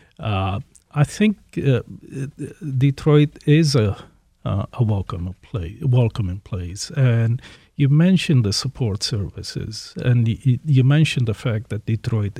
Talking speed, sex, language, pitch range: 135 wpm, male, English, 105-130 Hz